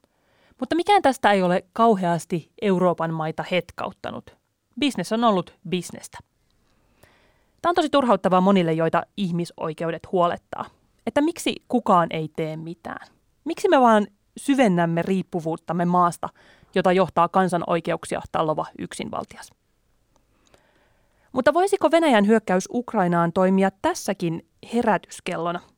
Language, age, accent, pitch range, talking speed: Finnish, 30-49, native, 170-215 Hz, 105 wpm